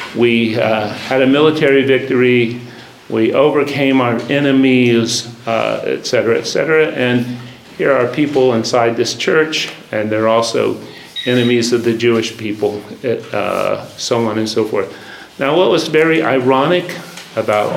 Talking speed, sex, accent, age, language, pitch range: 140 wpm, male, American, 50-69, English, 115-140 Hz